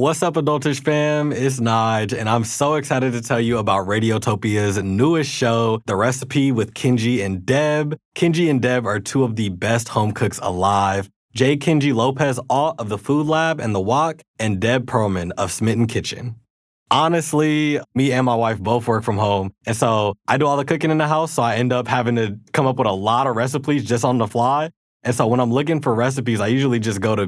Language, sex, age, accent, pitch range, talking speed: English, male, 20-39, American, 110-140 Hz, 220 wpm